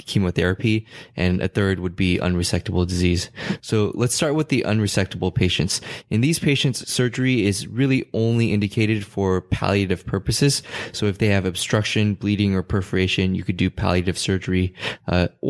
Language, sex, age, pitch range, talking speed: English, male, 20-39, 95-115 Hz, 155 wpm